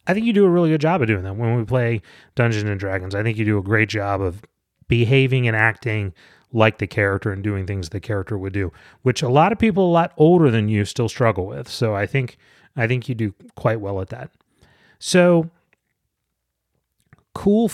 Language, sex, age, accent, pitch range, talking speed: English, male, 30-49, American, 105-145 Hz, 210 wpm